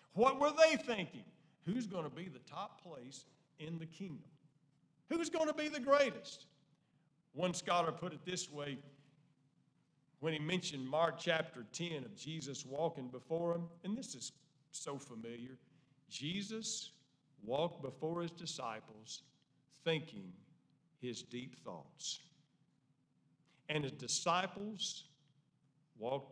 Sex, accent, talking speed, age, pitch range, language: male, American, 125 wpm, 50-69, 145-195 Hz, English